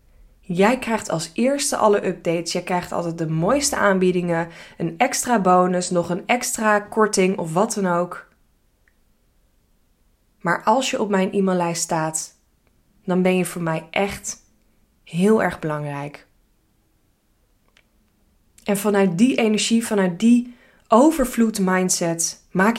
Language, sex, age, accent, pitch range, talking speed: Dutch, female, 20-39, Dutch, 170-210 Hz, 125 wpm